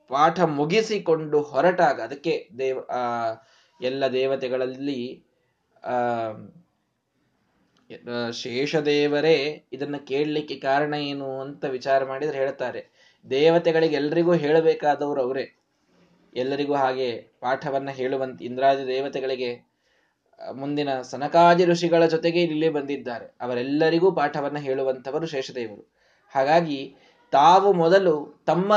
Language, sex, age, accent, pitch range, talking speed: Kannada, male, 20-39, native, 135-170 Hz, 90 wpm